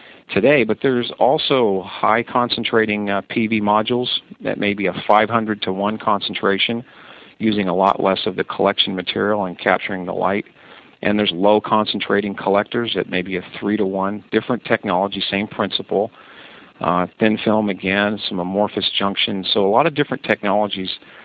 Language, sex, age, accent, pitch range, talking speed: English, male, 50-69, American, 95-110 Hz, 160 wpm